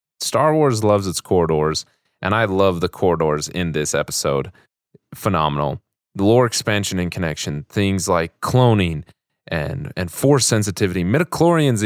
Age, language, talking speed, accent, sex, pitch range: 30-49, English, 135 wpm, American, male, 85-115 Hz